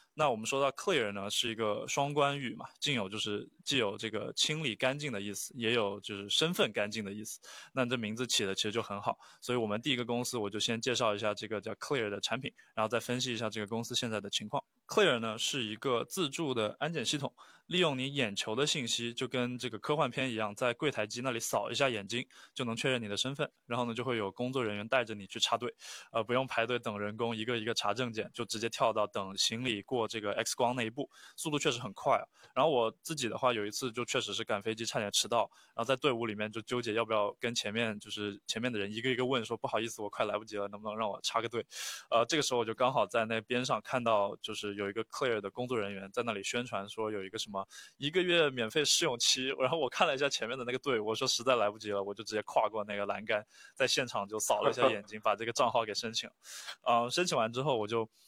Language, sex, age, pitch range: Chinese, male, 20-39, 110-130 Hz